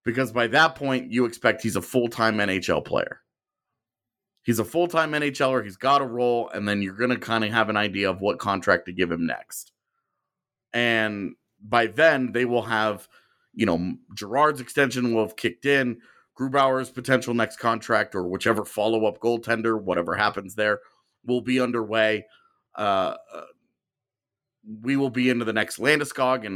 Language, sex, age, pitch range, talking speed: English, male, 30-49, 110-130 Hz, 165 wpm